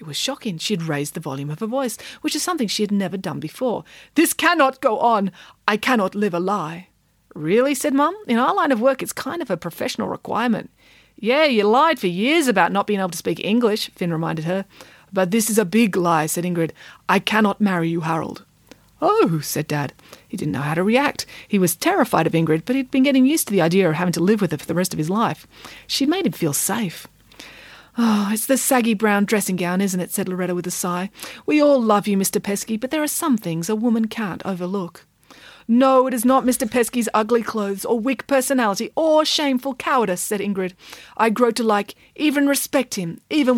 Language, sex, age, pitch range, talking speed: English, female, 40-59, 180-255 Hz, 225 wpm